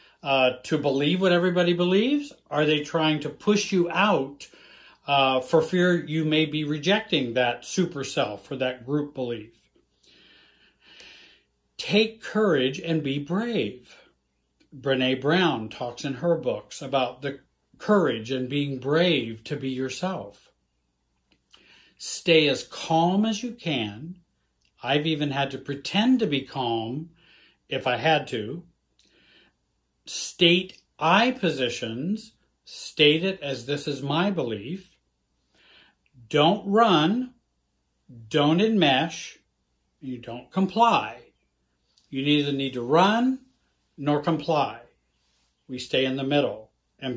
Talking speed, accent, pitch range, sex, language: 120 wpm, American, 130-185 Hz, male, English